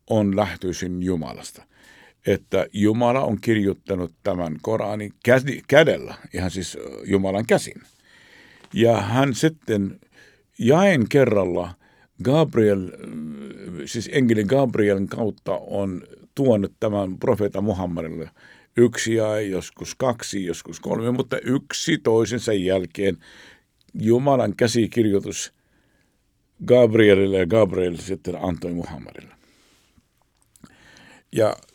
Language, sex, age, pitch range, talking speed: Finnish, male, 60-79, 90-120 Hz, 90 wpm